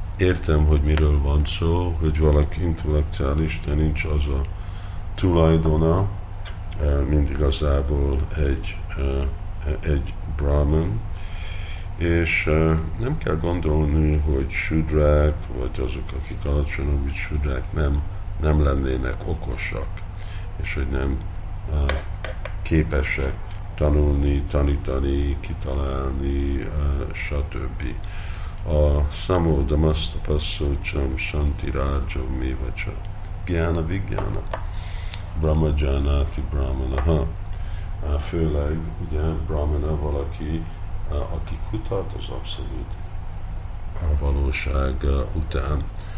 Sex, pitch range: male, 75-90 Hz